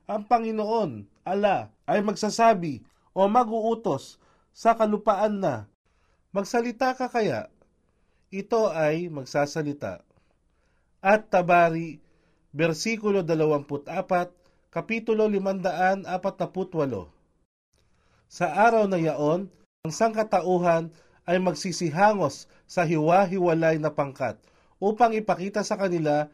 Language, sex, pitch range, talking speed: Filipino, male, 155-205 Hz, 85 wpm